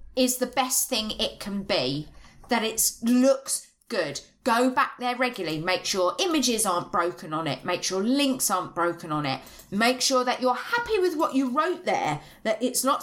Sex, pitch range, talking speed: female, 185-265 Hz, 195 wpm